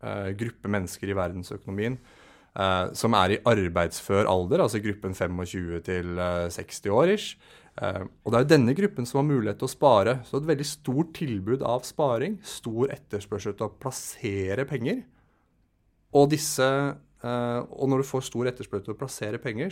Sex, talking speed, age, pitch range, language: male, 150 wpm, 30-49, 100-125 Hz, English